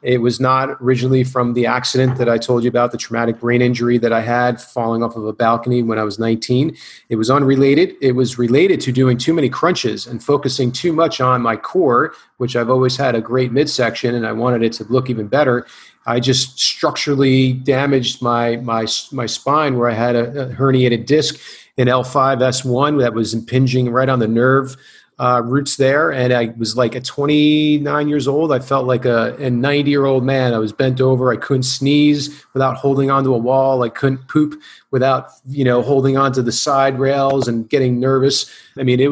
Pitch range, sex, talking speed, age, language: 120-140 Hz, male, 205 wpm, 40-59, English